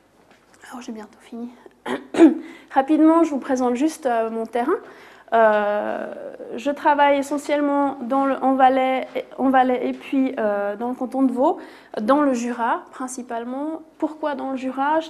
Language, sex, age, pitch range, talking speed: French, female, 30-49, 240-285 Hz, 150 wpm